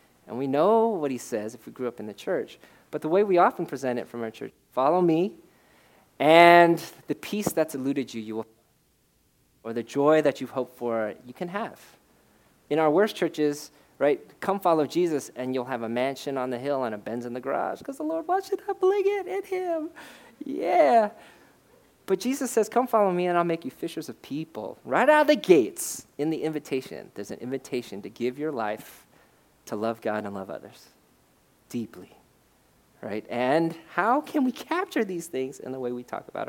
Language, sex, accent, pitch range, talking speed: English, male, American, 120-195 Hz, 205 wpm